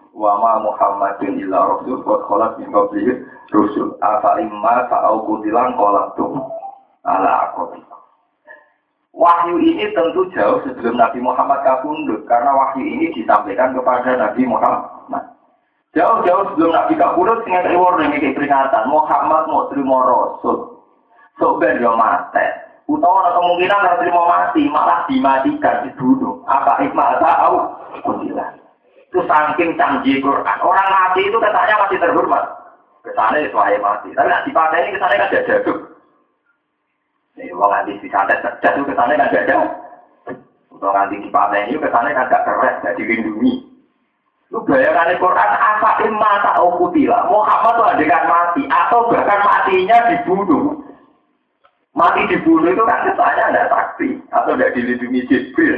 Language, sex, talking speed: Indonesian, male, 105 wpm